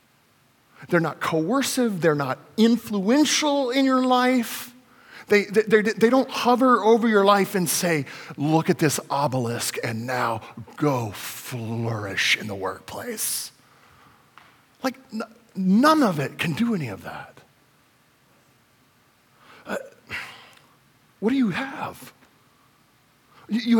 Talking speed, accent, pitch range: 110 wpm, American, 125-200 Hz